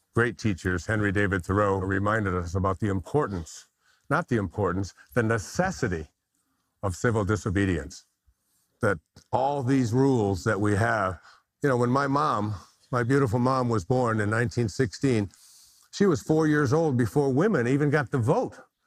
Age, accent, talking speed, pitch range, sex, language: 50-69, American, 155 wpm, 105-150 Hz, male, English